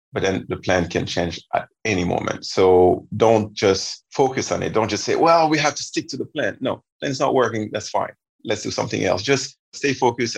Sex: male